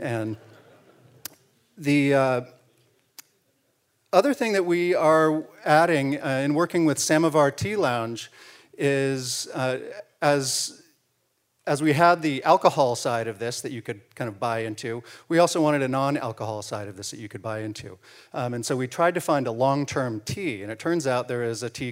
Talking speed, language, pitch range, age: 185 wpm, English, 120-145 Hz, 40-59